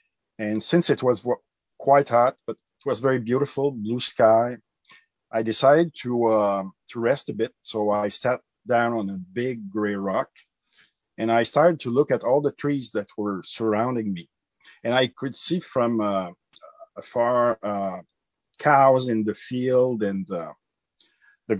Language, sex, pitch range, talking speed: English, male, 105-130 Hz, 160 wpm